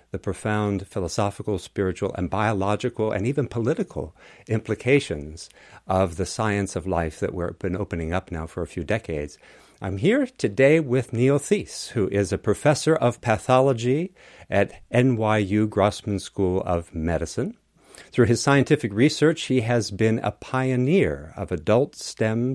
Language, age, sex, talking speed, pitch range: English, 50-69, male, 145 wpm, 95-135 Hz